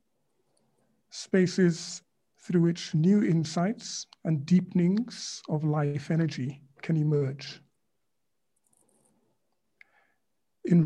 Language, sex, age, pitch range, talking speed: English, male, 50-69, 150-180 Hz, 70 wpm